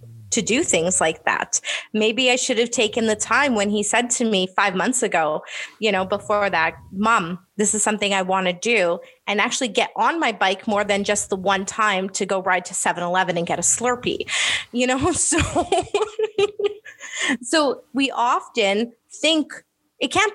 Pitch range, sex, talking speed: 195-250 Hz, female, 185 wpm